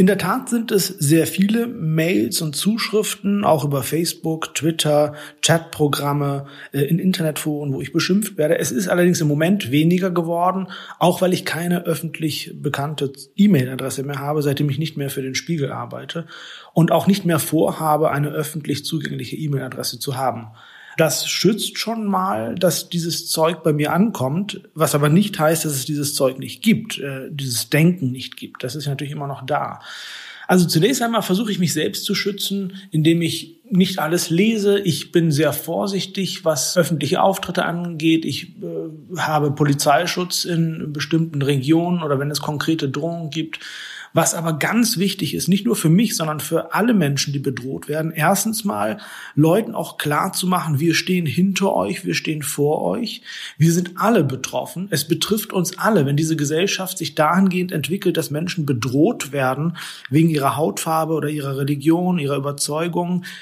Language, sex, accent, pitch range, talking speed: German, male, German, 150-185 Hz, 165 wpm